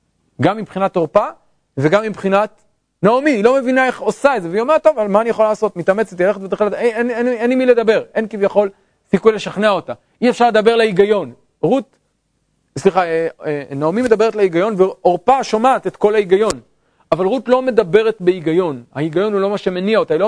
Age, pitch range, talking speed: 40-59, 160-220 Hz, 170 wpm